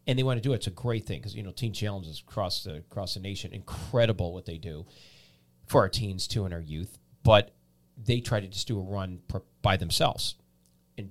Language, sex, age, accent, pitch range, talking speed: English, male, 40-59, American, 90-110 Hz, 230 wpm